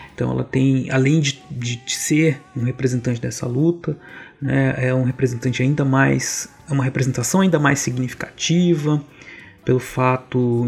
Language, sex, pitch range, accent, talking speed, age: Portuguese, male, 125-150 Hz, Brazilian, 145 wpm, 30-49